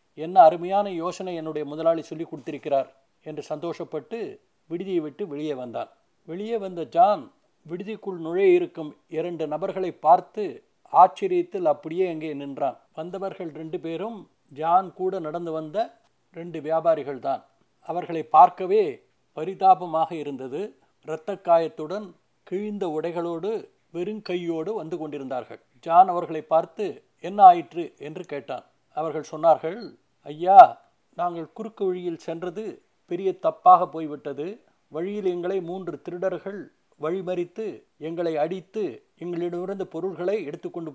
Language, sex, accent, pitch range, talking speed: Tamil, male, native, 160-195 Hz, 105 wpm